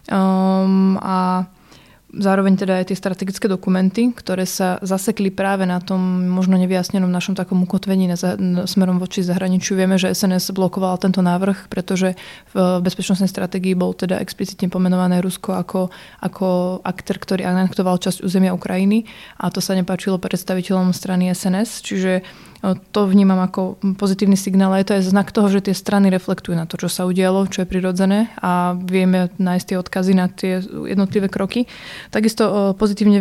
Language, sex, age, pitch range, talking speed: Slovak, female, 20-39, 185-195 Hz, 165 wpm